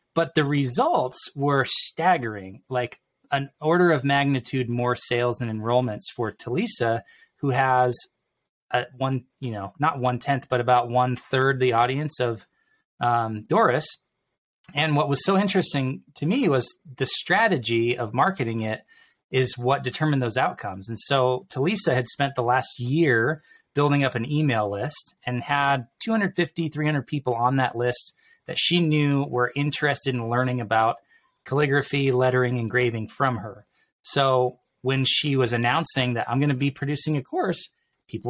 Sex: male